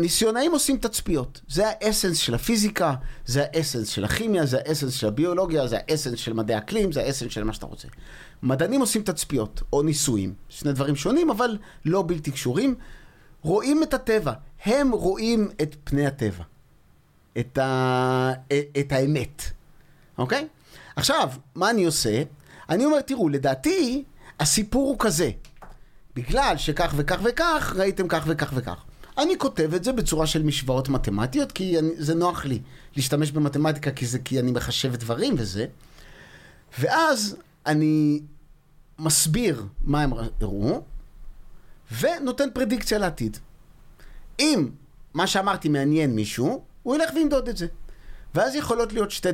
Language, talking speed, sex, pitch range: Hebrew, 140 wpm, male, 130-210 Hz